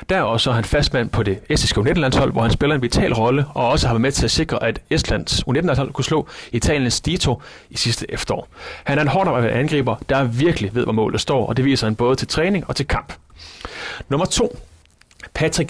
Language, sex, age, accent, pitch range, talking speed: Danish, male, 30-49, native, 120-155 Hz, 220 wpm